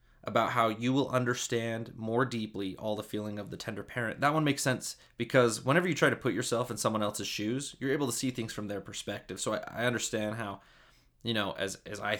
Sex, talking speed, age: male, 230 wpm, 20-39